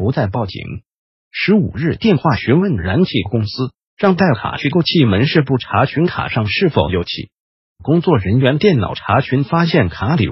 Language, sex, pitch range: Chinese, male, 120-180 Hz